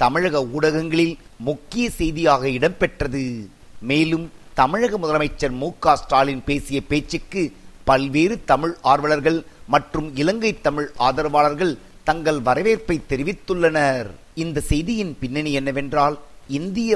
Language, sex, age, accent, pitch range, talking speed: Tamil, male, 50-69, native, 135-165 Hz, 100 wpm